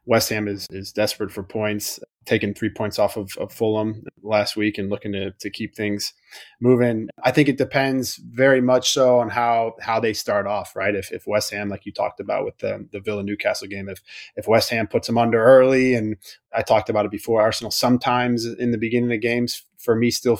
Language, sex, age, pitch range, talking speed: English, male, 20-39, 105-120 Hz, 225 wpm